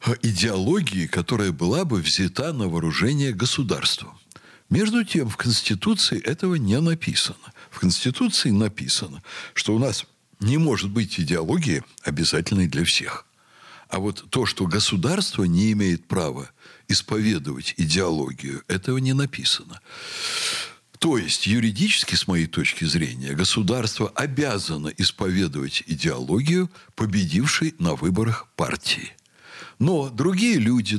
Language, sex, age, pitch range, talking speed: Russian, male, 60-79, 95-150 Hz, 115 wpm